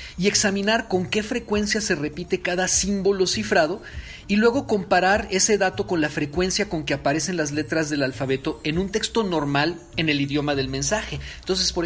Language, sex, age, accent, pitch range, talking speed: Spanish, male, 40-59, Mexican, 135-180 Hz, 180 wpm